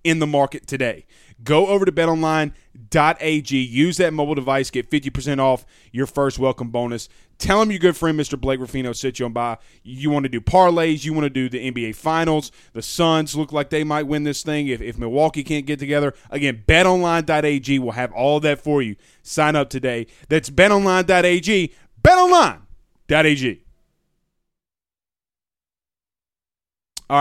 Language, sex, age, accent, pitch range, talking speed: English, male, 30-49, American, 130-165 Hz, 160 wpm